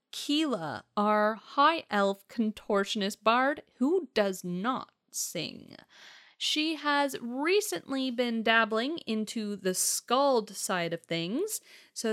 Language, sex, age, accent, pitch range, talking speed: English, female, 30-49, American, 200-275 Hz, 110 wpm